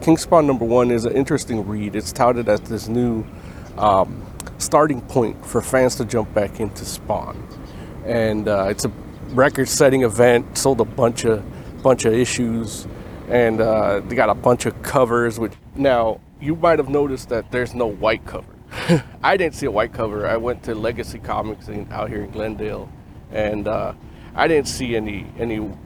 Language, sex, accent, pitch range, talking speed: English, male, American, 110-145 Hz, 180 wpm